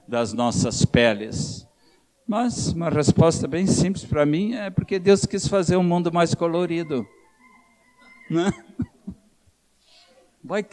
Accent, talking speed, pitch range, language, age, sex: Brazilian, 115 wpm, 125-190 Hz, Portuguese, 60-79, male